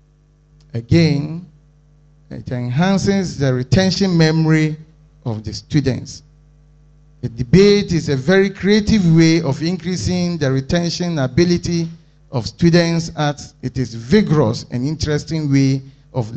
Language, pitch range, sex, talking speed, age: English, 135-160 Hz, male, 115 wpm, 50-69